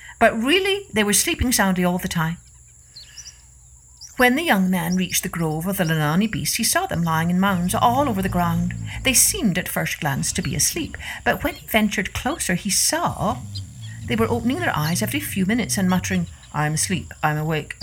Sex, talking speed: female, 200 wpm